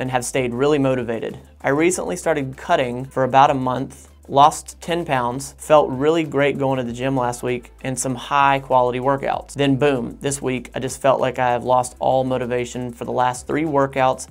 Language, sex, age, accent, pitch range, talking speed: English, male, 30-49, American, 125-140 Hz, 200 wpm